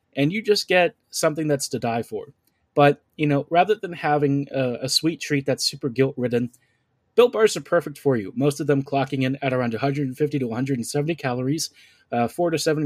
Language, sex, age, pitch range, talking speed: English, male, 20-39, 130-160 Hz, 205 wpm